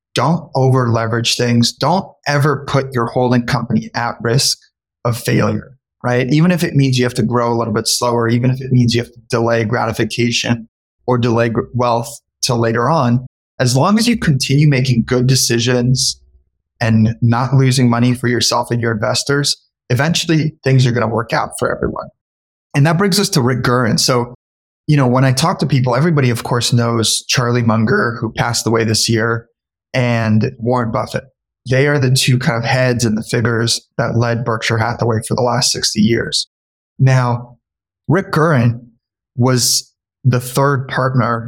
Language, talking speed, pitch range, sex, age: English, 175 wpm, 115-130 Hz, male, 20-39